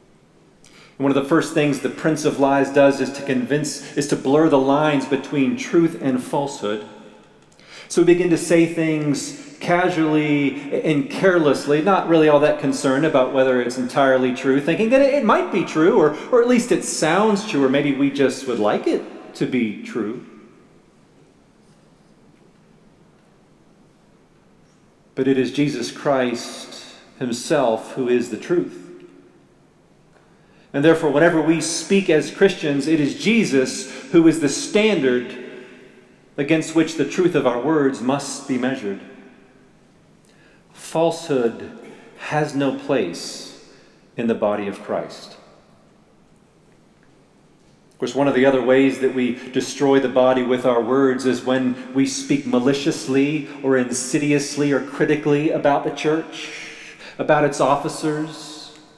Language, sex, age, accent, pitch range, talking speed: English, male, 40-59, American, 135-160 Hz, 140 wpm